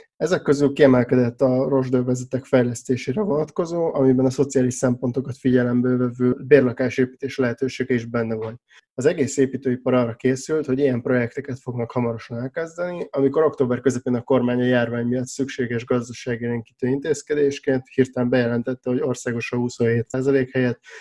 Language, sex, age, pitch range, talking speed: Hungarian, male, 20-39, 120-135 Hz, 135 wpm